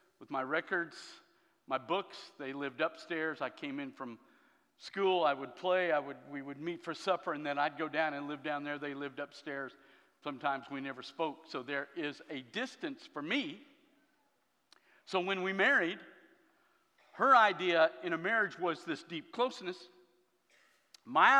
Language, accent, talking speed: Swedish, American, 170 wpm